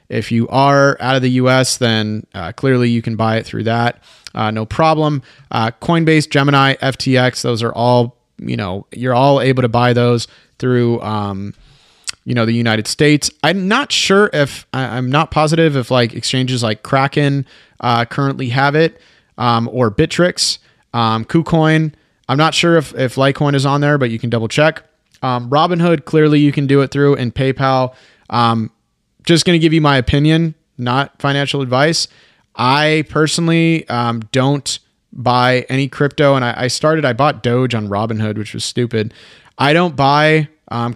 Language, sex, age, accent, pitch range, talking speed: English, male, 30-49, American, 120-150 Hz, 175 wpm